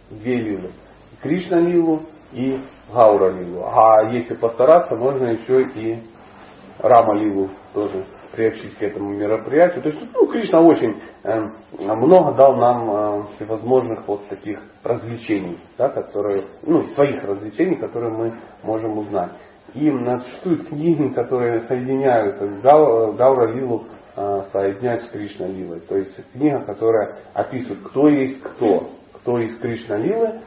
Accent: native